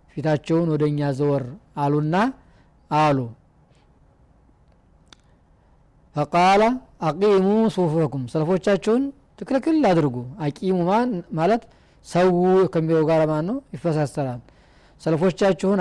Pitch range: 145-180 Hz